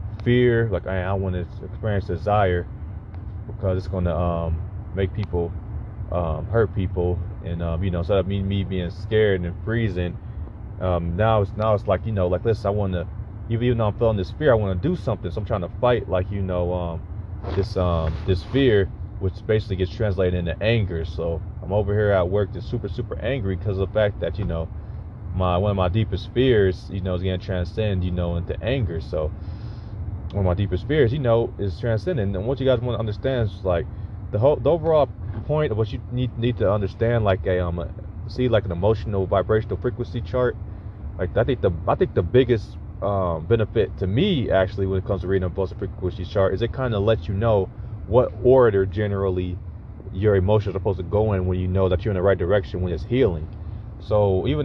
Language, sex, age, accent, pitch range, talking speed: English, male, 30-49, American, 90-110 Hz, 225 wpm